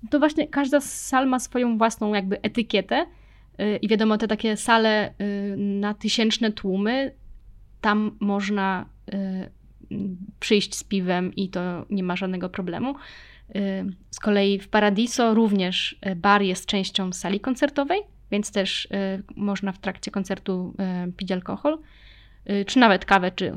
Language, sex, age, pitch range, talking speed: Polish, female, 20-39, 195-225 Hz, 125 wpm